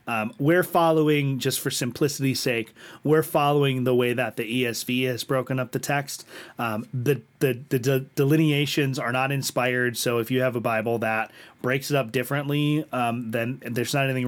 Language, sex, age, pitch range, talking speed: English, male, 30-49, 120-150 Hz, 185 wpm